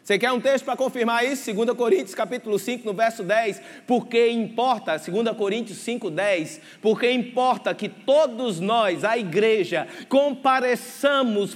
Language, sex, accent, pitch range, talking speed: Portuguese, male, Brazilian, 230-280 Hz, 145 wpm